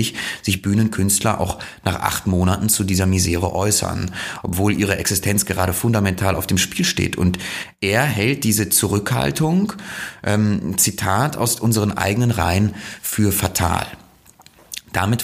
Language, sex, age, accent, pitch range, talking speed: German, male, 30-49, German, 95-110 Hz, 130 wpm